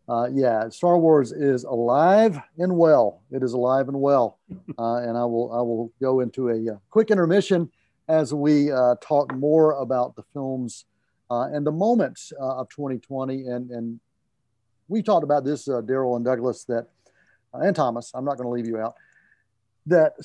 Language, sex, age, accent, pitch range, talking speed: English, male, 50-69, American, 115-145 Hz, 185 wpm